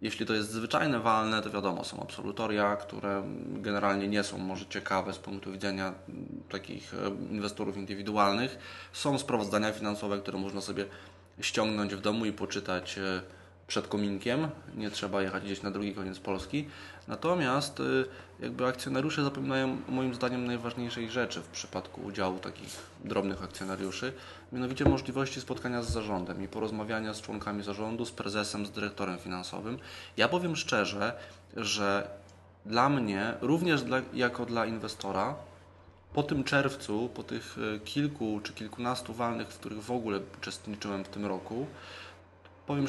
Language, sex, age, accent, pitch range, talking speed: Polish, male, 20-39, native, 100-125 Hz, 140 wpm